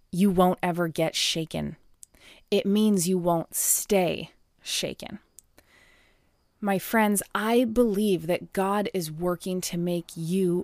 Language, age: English, 30-49